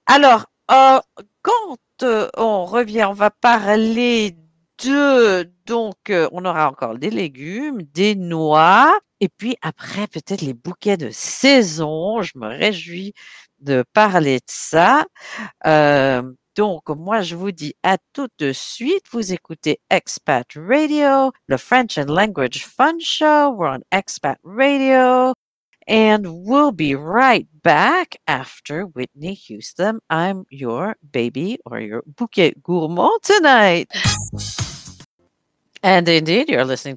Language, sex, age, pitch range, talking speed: English, female, 50-69, 155-255 Hz, 125 wpm